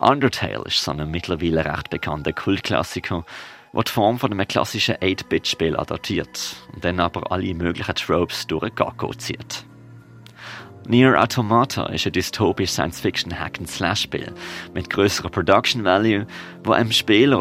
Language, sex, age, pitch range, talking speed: German, male, 30-49, 85-115 Hz, 130 wpm